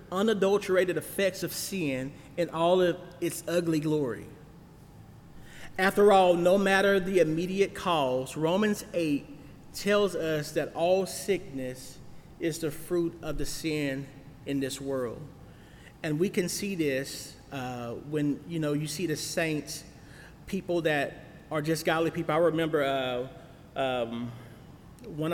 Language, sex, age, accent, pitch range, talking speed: English, male, 40-59, American, 135-165 Hz, 135 wpm